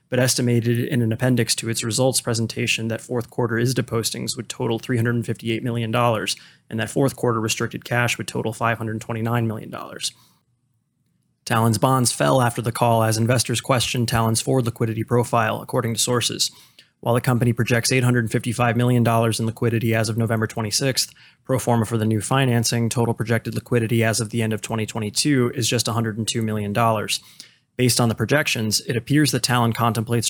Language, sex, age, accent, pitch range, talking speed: English, male, 20-39, American, 115-125 Hz, 170 wpm